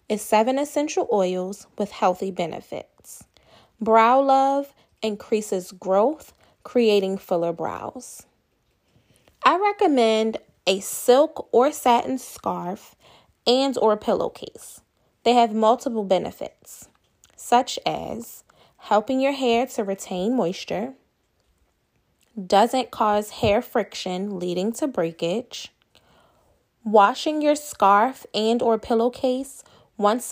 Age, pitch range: 10-29, 200-255 Hz